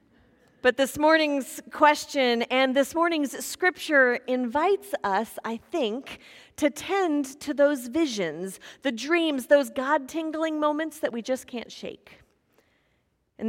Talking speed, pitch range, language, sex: 125 wpm, 210-275 Hz, English, female